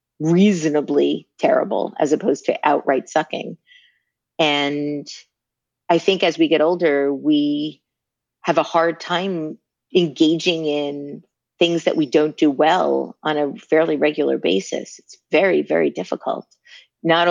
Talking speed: 130 wpm